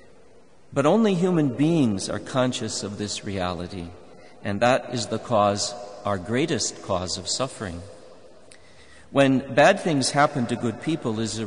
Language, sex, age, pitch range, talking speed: English, male, 50-69, 105-135 Hz, 145 wpm